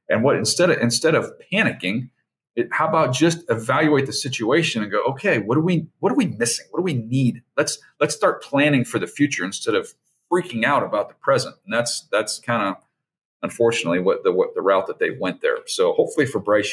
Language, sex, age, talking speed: English, male, 40-59, 220 wpm